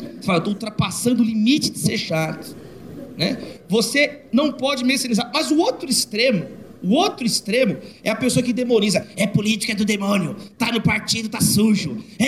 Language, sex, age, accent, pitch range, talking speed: Portuguese, male, 40-59, Brazilian, 220-290 Hz, 165 wpm